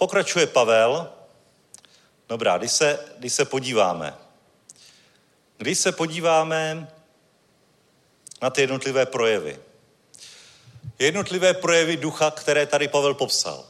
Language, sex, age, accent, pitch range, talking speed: Czech, male, 40-59, native, 140-160 Hz, 90 wpm